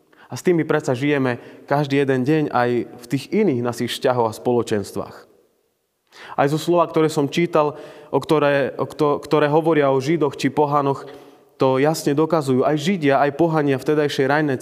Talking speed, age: 170 wpm, 30-49